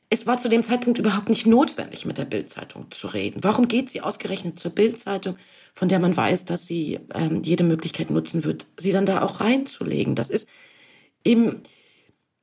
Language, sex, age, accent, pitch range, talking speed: German, female, 30-49, German, 175-230 Hz, 185 wpm